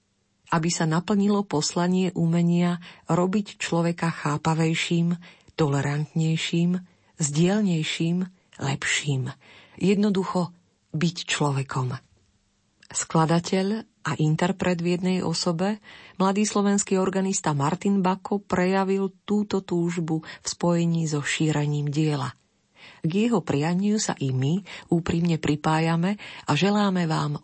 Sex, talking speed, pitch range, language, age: female, 95 wpm, 145-180 Hz, Slovak, 40-59